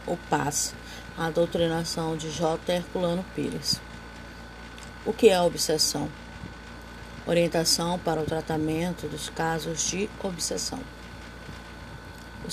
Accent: Brazilian